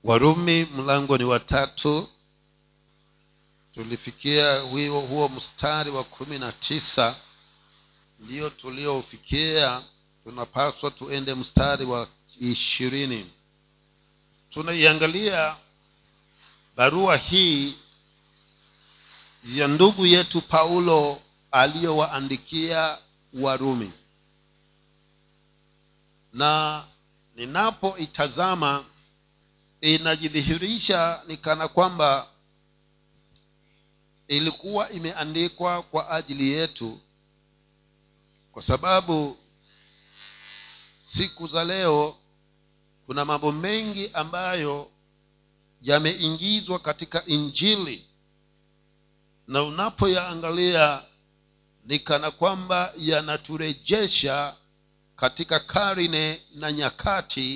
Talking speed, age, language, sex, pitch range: 65 wpm, 50-69, Swahili, male, 135-165 Hz